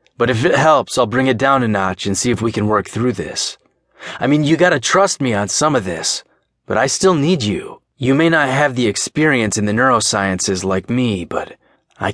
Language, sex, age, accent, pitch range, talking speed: English, male, 30-49, American, 100-130 Hz, 225 wpm